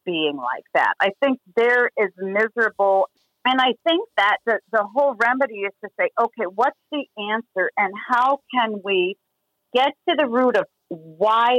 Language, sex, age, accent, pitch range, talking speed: English, female, 40-59, American, 195-255 Hz, 170 wpm